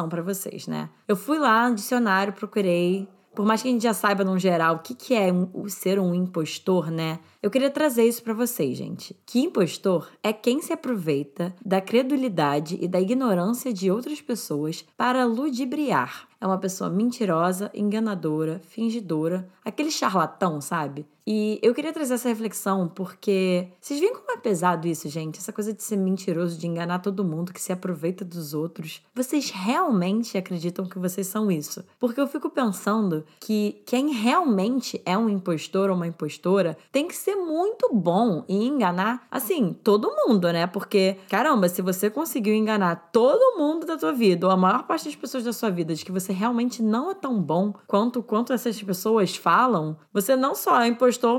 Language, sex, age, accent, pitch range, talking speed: Portuguese, female, 10-29, Brazilian, 180-245 Hz, 180 wpm